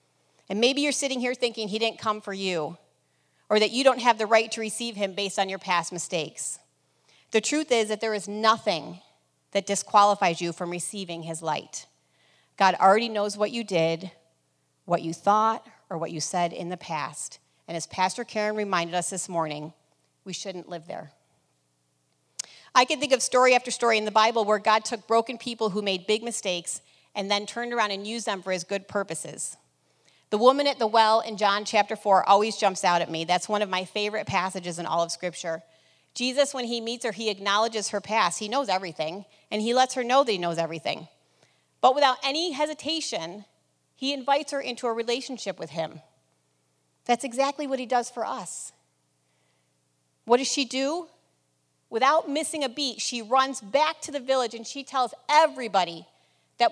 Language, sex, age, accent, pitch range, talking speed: English, female, 40-59, American, 170-240 Hz, 190 wpm